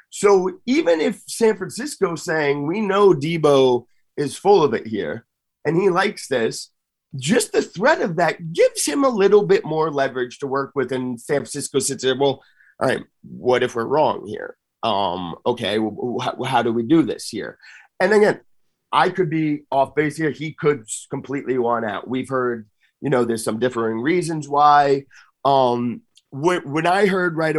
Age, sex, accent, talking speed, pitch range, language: 30-49, male, American, 185 wpm, 115-155 Hz, English